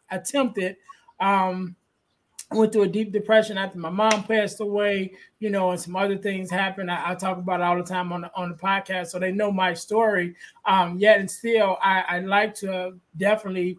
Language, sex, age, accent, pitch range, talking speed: English, male, 20-39, American, 185-225 Hz, 195 wpm